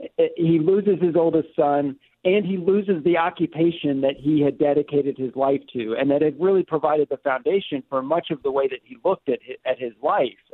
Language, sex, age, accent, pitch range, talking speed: English, male, 50-69, American, 140-180 Hz, 200 wpm